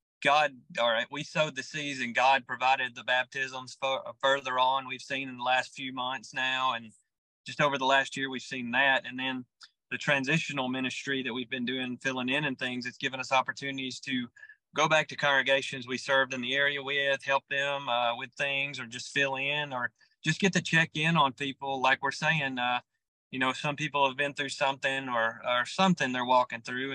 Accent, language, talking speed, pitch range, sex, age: American, English, 210 wpm, 130-145 Hz, male, 30-49